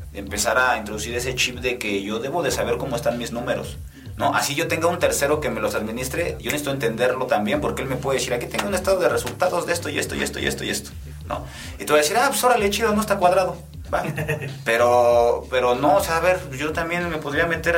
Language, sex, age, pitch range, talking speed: Spanish, male, 30-49, 115-155 Hz, 255 wpm